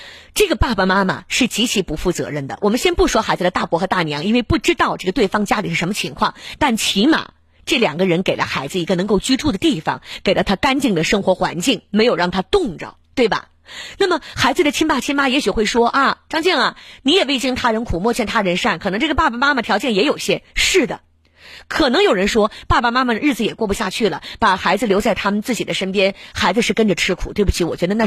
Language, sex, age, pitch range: Chinese, female, 30-49, 170-255 Hz